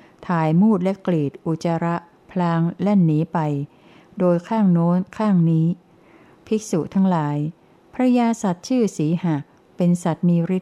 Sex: female